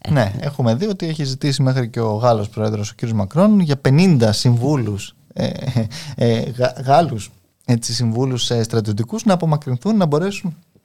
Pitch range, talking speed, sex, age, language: 120-155 Hz, 160 wpm, male, 20-39, Greek